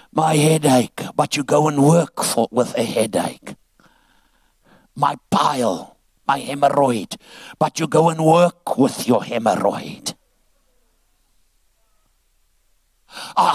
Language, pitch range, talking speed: English, 175-240 Hz, 100 wpm